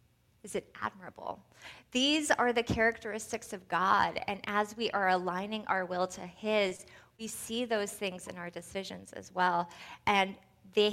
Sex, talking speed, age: female, 160 wpm, 20-39